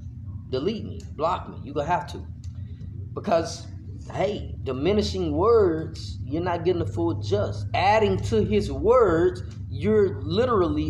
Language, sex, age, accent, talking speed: English, male, 30-49, American, 140 wpm